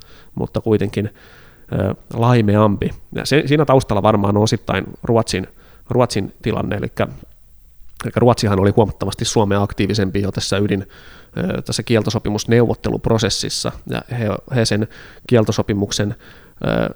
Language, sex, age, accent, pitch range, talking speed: Finnish, male, 30-49, native, 100-115 Hz, 105 wpm